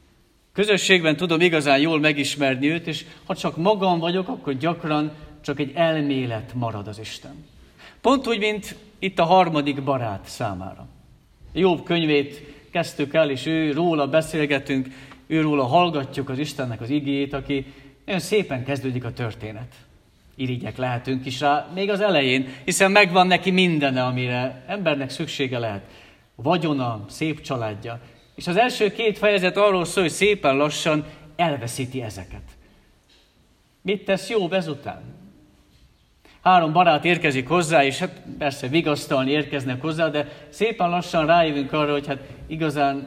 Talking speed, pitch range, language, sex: 140 wpm, 130-170 Hz, Hungarian, male